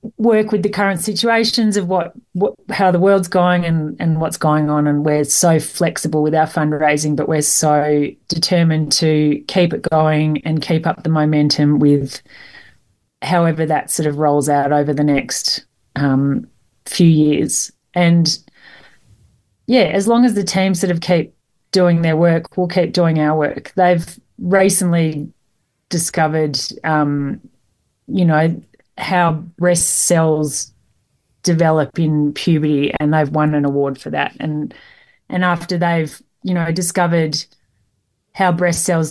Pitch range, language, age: 150-180 Hz, English, 30-49